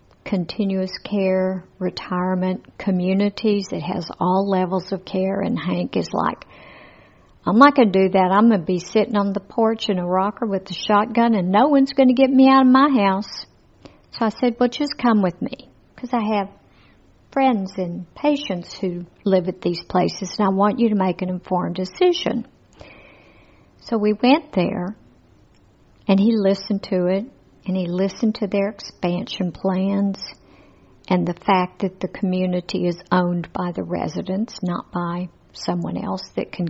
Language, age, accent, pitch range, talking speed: English, 60-79, American, 185-225 Hz, 175 wpm